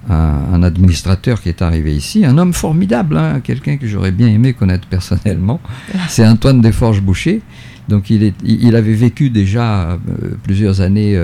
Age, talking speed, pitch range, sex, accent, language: 50-69, 150 wpm, 90-120 Hz, male, French, French